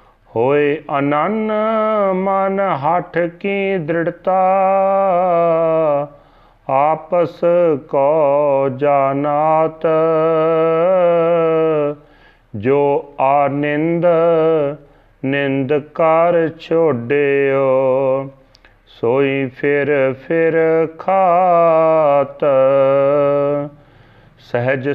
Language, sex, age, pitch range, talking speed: Punjabi, male, 40-59, 140-170 Hz, 50 wpm